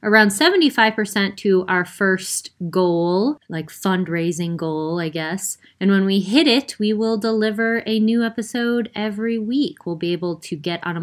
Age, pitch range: 20-39, 165-220 Hz